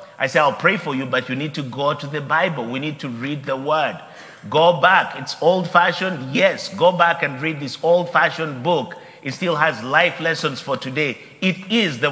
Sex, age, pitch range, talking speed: male, 50-69, 145-180 Hz, 210 wpm